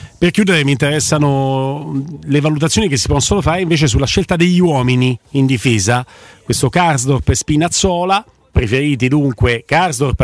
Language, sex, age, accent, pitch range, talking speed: Italian, male, 40-59, native, 125-170 Hz, 140 wpm